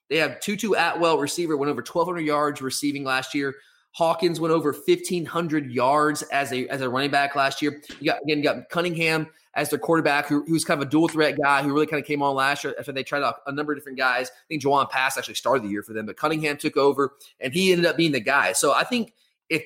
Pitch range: 145-180 Hz